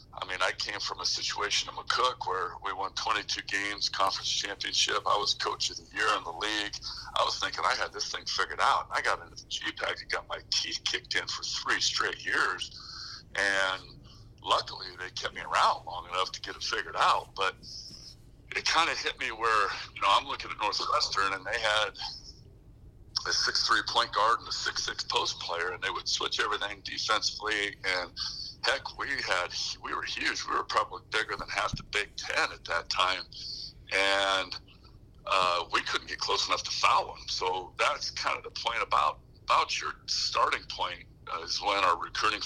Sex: male